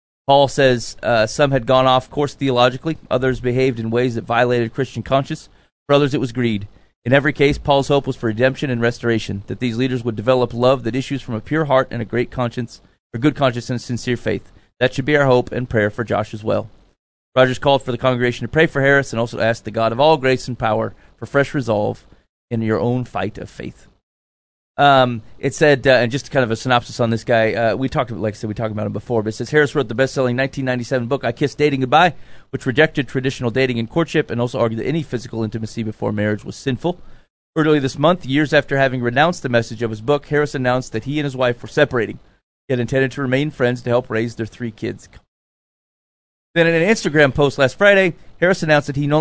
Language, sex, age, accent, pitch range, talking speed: English, male, 30-49, American, 115-140 Hz, 235 wpm